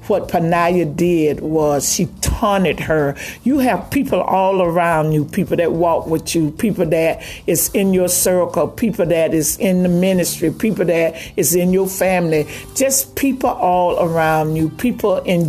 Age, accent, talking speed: 50-69, American, 165 wpm